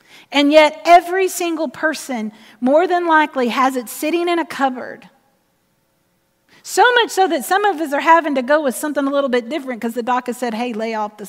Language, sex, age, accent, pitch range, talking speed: English, female, 40-59, American, 250-370 Hz, 215 wpm